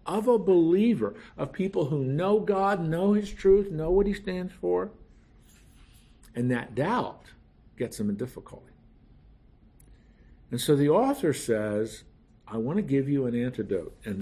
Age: 50-69